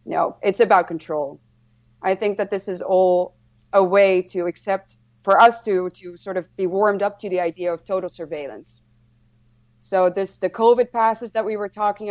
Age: 30-49